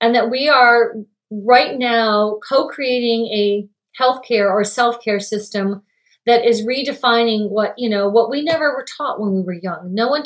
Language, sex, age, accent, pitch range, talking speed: English, female, 30-49, American, 215-265 Hz, 170 wpm